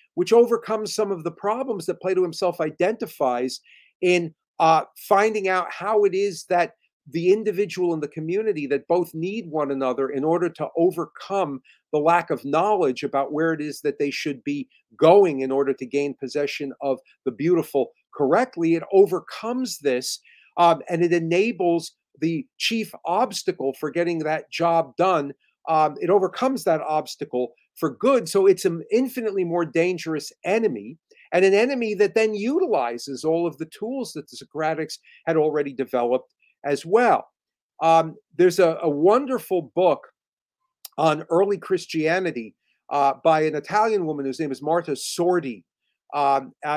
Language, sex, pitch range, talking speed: English, male, 145-195 Hz, 155 wpm